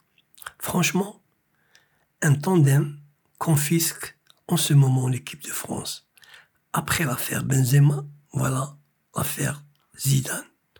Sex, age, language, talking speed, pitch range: male, 60-79, French, 90 wpm, 140-160 Hz